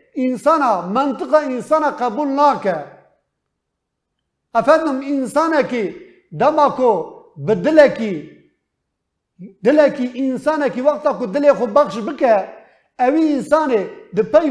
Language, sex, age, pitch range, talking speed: Turkish, male, 50-69, 225-295 Hz, 120 wpm